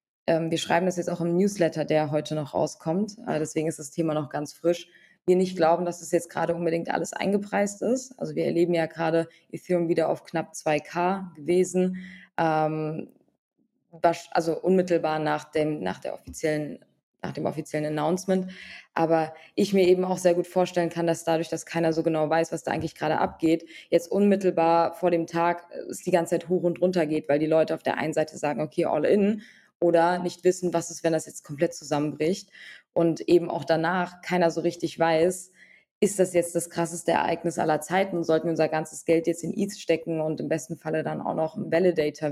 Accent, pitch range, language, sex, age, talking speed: German, 160-180 Hz, German, female, 20-39, 195 wpm